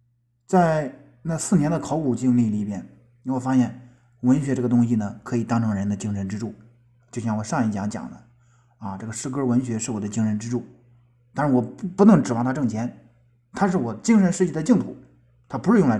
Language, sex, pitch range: Chinese, male, 110-155 Hz